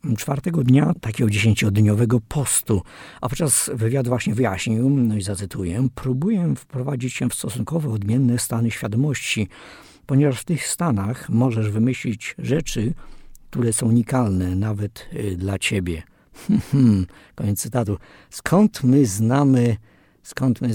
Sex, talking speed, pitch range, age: male, 115 wpm, 105-130 Hz, 50-69